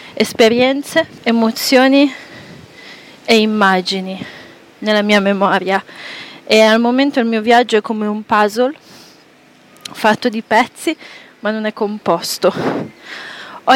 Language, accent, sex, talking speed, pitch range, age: Italian, native, female, 110 wpm, 200-245 Hz, 20-39